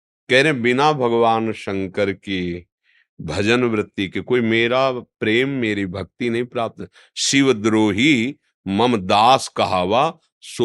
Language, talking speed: Hindi, 120 wpm